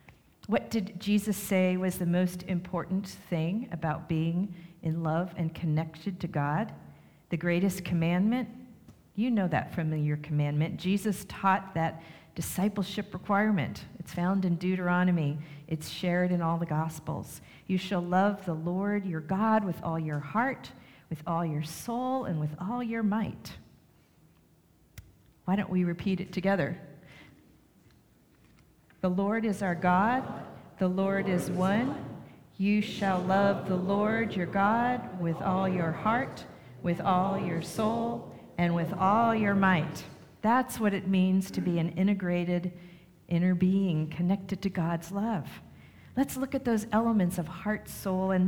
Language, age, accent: English, 50-69, American